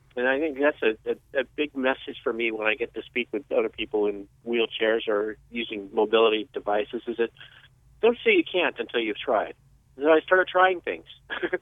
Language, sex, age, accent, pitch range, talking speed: English, male, 40-59, American, 115-145 Hz, 200 wpm